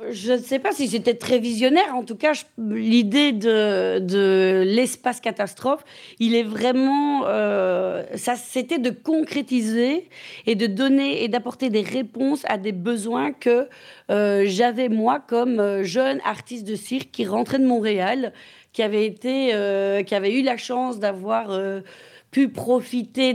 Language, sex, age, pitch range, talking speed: French, female, 30-49, 200-245 Hz, 145 wpm